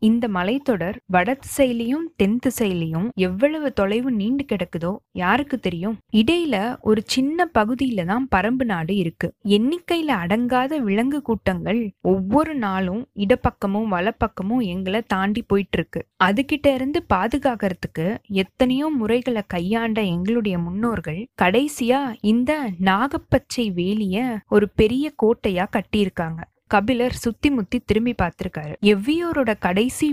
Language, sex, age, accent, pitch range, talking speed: Tamil, female, 20-39, native, 195-255 Hz, 110 wpm